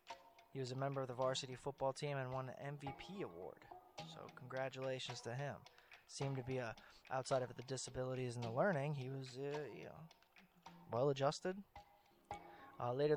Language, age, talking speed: English, 20-39, 180 wpm